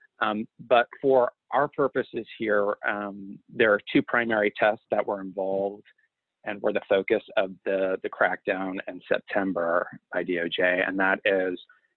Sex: male